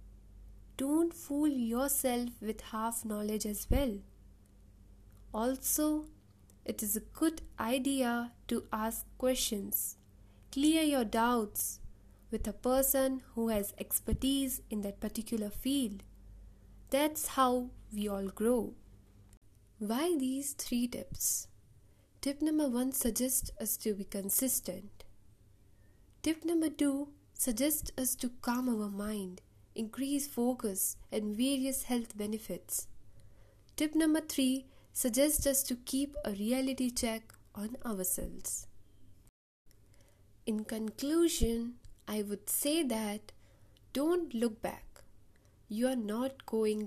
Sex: female